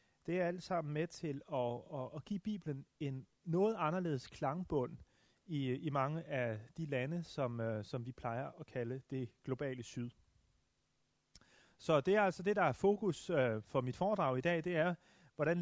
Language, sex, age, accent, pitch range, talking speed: Danish, male, 30-49, native, 130-175 Hz, 185 wpm